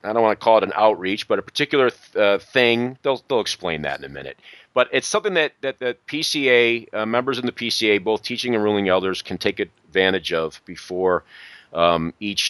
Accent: American